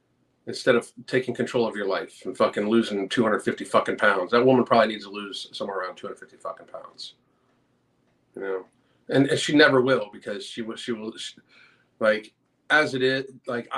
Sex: male